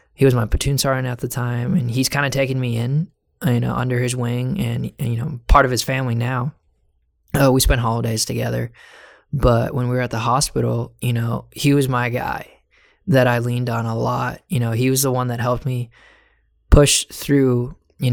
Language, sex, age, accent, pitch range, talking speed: English, male, 20-39, American, 115-130 Hz, 210 wpm